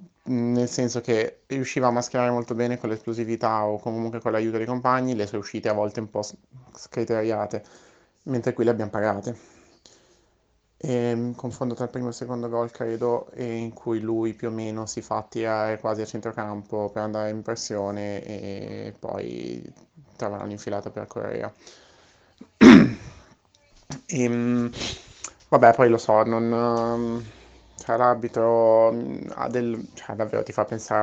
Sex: male